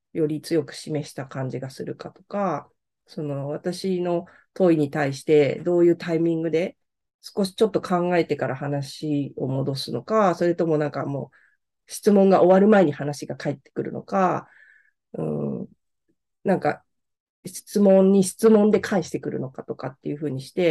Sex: female